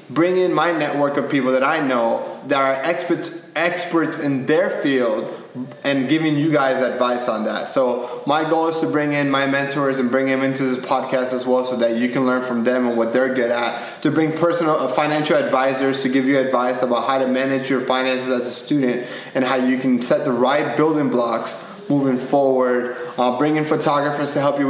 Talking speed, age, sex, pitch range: 215 wpm, 20-39, male, 125-150 Hz